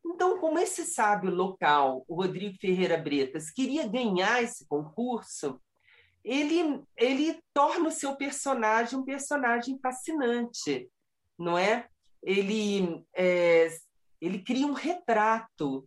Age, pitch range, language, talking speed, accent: 40-59, 165-240 Hz, Portuguese, 110 wpm, Brazilian